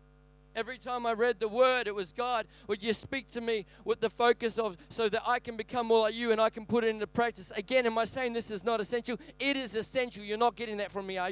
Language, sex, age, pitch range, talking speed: English, male, 40-59, 140-230 Hz, 270 wpm